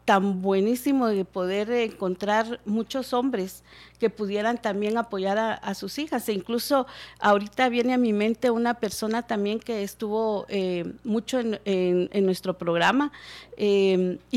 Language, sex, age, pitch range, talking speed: Spanish, female, 40-59, 205-250 Hz, 145 wpm